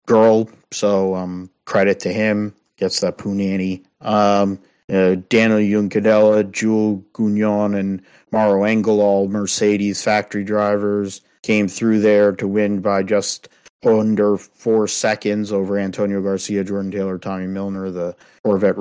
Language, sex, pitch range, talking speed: English, male, 100-105 Hz, 130 wpm